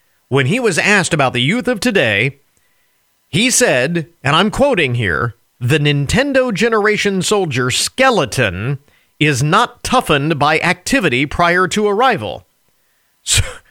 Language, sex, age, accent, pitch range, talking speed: English, male, 40-59, American, 125-190 Hz, 125 wpm